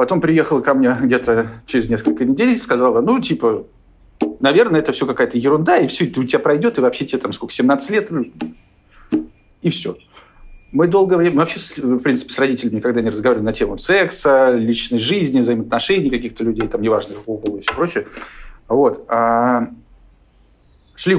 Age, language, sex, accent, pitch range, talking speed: 40-59, Russian, male, native, 110-135 Hz, 165 wpm